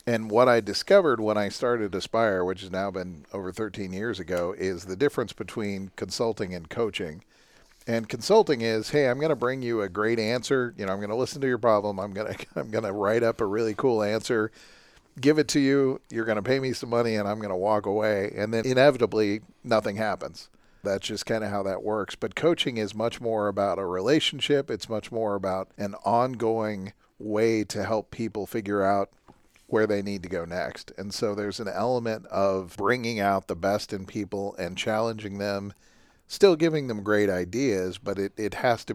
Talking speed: 210 wpm